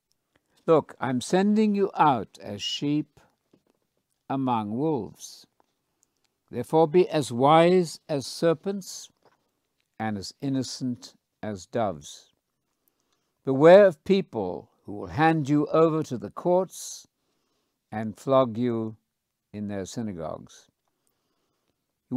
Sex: male